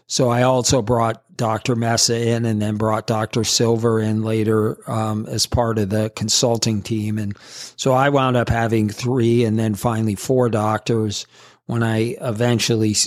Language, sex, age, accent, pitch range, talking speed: English, male, 40-59, American, 110-120 Hz, 165 wpm